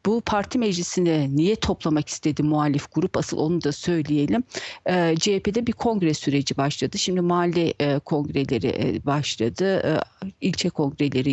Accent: native